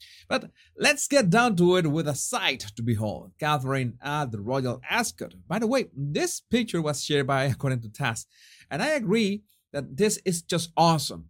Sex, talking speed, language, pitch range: male, 185 wpm, English, 115-170 Hz